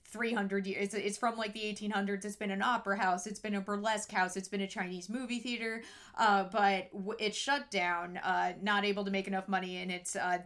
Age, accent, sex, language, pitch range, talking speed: 30-49, American, female, English, 195-235 Hz, 220 wpm